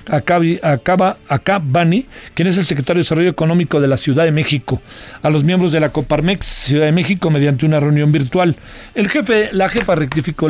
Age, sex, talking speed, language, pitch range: 50-69, male, 195 wpm, Spanish, 145-175 Hz